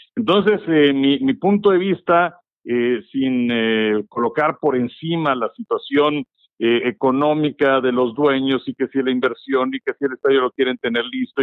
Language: Spanish